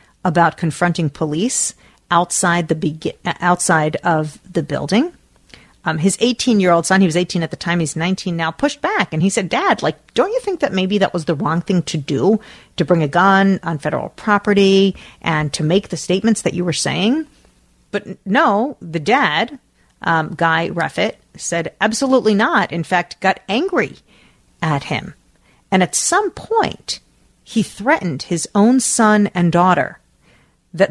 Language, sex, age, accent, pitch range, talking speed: English, female, 40-59, American, 165-210 Hz, 165 wpm